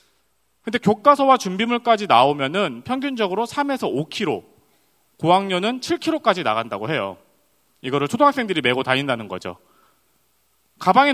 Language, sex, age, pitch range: Korean, male, 30-49, 160-255 Hz